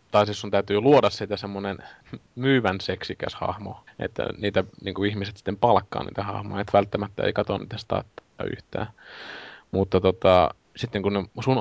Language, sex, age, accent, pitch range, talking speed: Finnish, male, 20-39, native, 95-105 Hz, 160 wpm